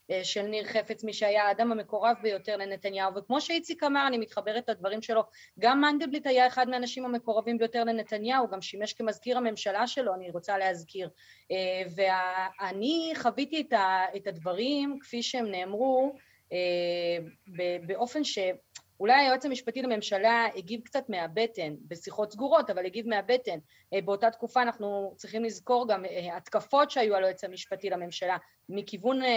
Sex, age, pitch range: female, 30-49, 195-245 Hz